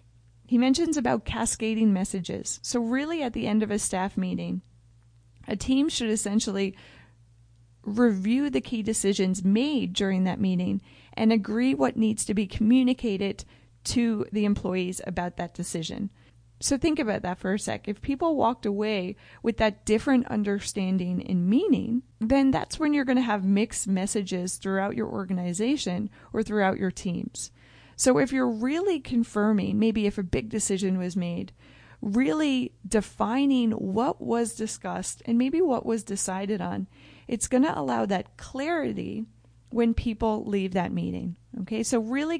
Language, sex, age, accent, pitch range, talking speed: English, female, 40-59, American, 185-235 Hz, 155 wpm